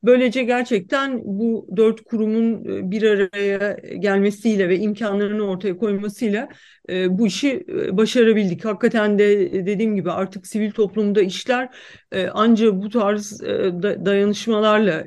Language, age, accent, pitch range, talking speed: Turkish, 50-69, native, 195-230 Hz, 110 wpm